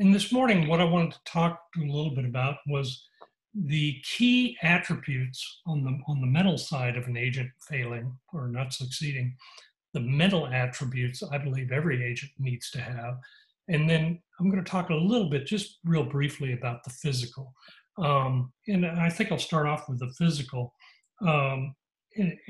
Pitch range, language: 125-165 Hz, English